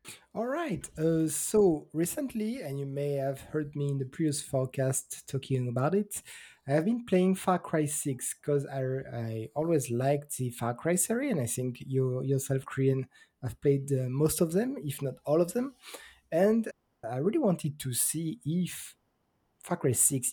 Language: English